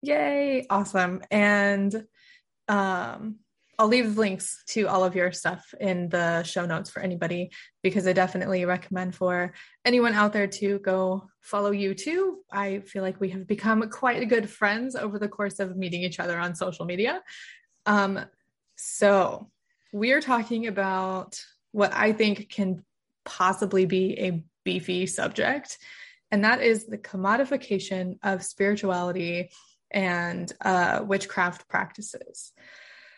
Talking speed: 135 wpm